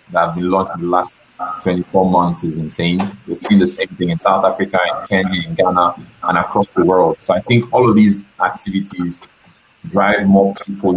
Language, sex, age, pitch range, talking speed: English, male, 30-49, 90-100 Hz, 210 wpm